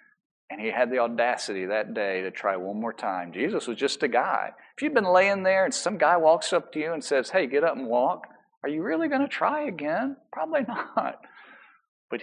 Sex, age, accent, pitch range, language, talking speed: male, 50-69, American, 140-195 Hz, English, 225 wpm